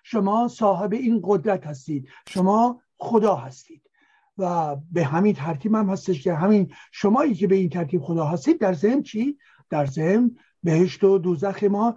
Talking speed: 160 wpm